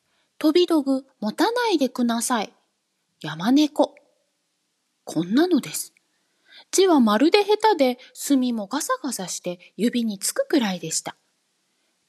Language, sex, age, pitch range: Japanese, female, 20-39, 210-320 Hz